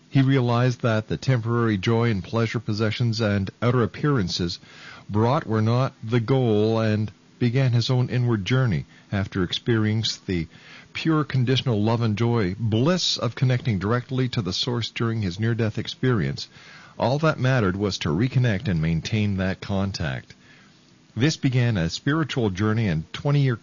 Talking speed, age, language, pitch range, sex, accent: 150 wpm, 50-69, English, 100-125 Hz, male, American